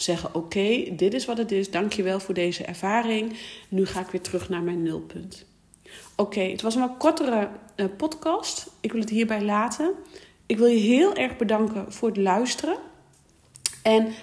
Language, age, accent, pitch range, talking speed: Dutch, 40-59, Dutch, 180-220 Hz, 175 wpm